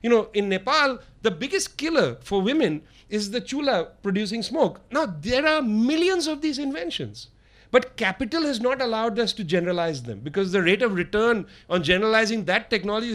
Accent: Indian